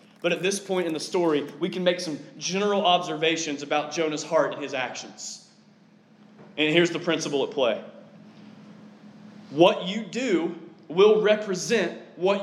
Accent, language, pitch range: American, English, 170-215 Hz